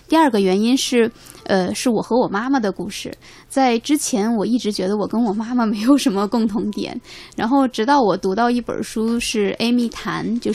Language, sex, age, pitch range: Chinese, female, 20-39, 195-240 Hz